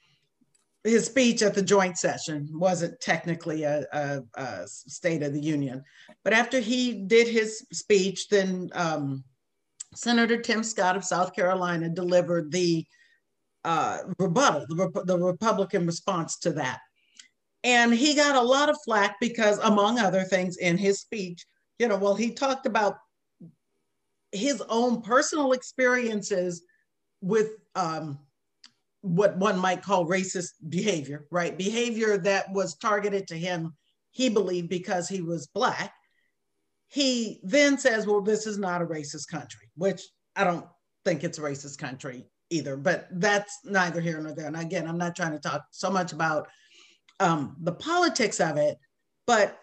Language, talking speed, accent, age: English, 150 wpm, American, 50-69